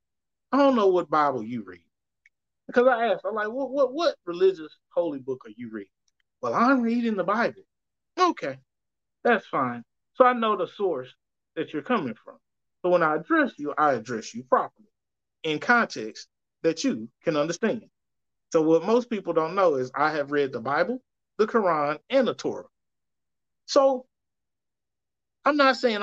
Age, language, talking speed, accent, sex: 30-49, English, 170 wpm, American, male